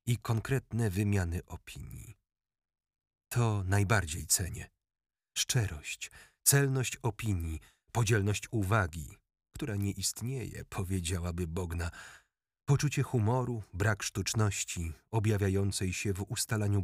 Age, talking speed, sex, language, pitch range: 40-59, 90 wpm, male, Polish, 95-115 Hz